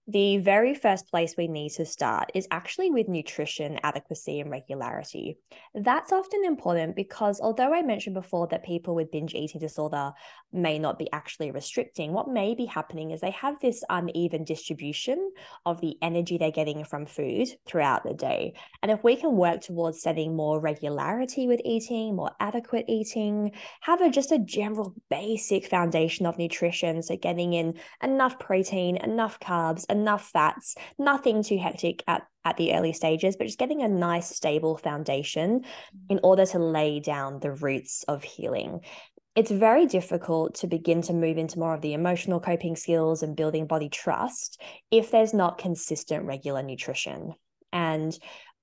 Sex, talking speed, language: female, 165 wpm, English